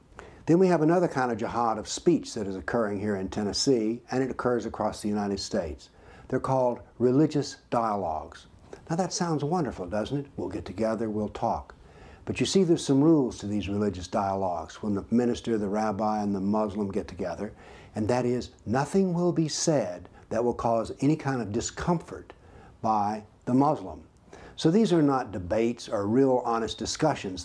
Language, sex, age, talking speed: English, male, 60-79, 180 wpm